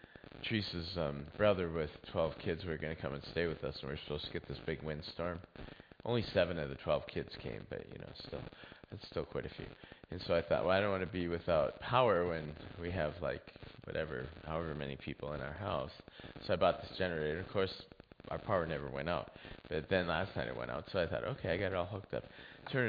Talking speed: 240 wpm